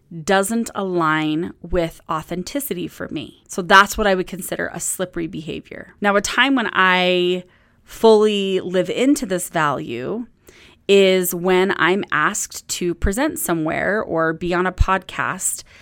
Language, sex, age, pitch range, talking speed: English, female, 20-39, 175-200 Hz, 140 wpm